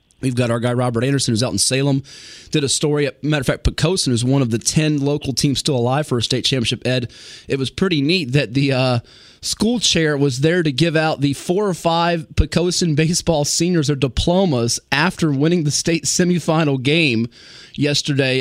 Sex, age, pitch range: male, 30-49, 120-145 Hz